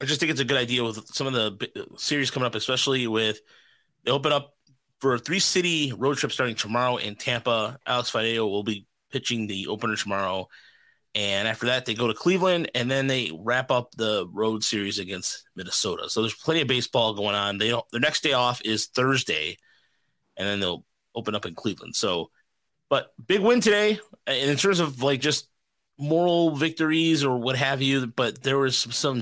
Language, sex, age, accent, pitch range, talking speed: English, male, 30-49, American, 115-150 Hz, 195 wpm